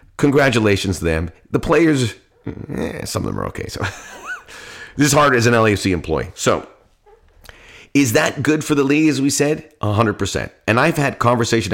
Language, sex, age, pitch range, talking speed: English, male, 30-49, 100-145 Hz, 170 wpm